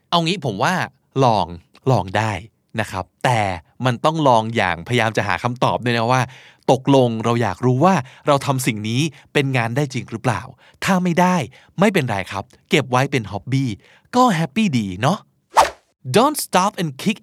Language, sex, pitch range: Thai, male, 120-175 Hz